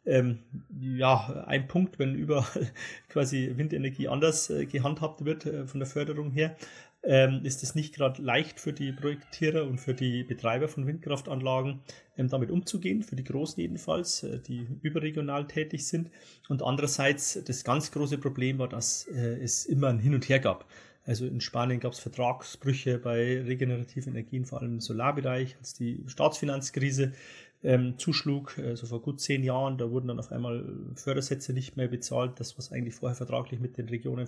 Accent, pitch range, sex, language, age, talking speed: German, 125-140 Hz, male, German, 30-49, 165 wpm